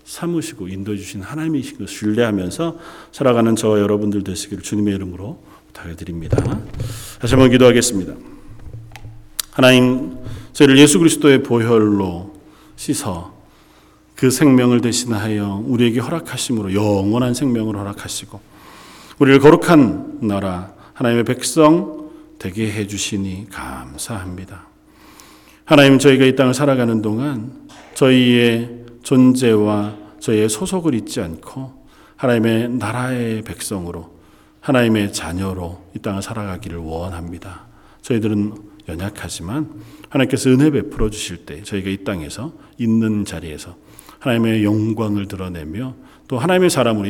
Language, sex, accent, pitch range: Korean, male, native, 95-125 Hz